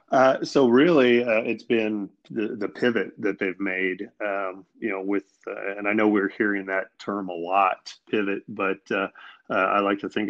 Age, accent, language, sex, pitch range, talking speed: 30-49, American, English, male, 95-100 Hz, 200 wpm